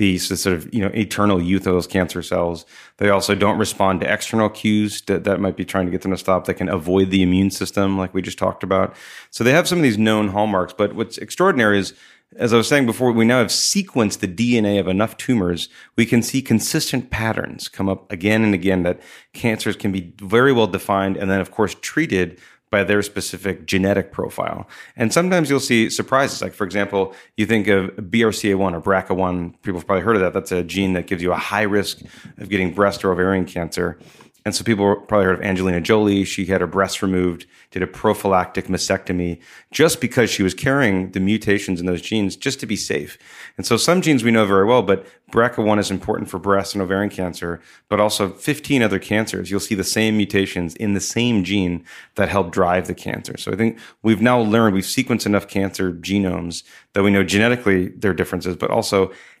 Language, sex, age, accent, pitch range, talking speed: German, male, 30-49, American, 95-110 Hz, 215 wpm